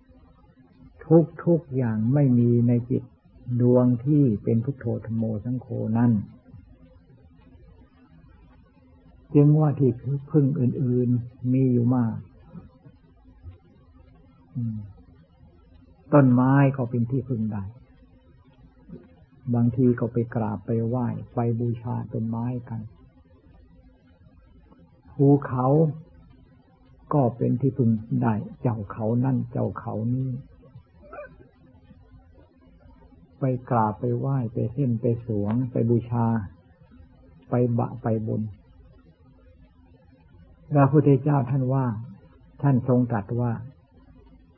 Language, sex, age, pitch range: Thai, male, 60-79, 85-130 Hz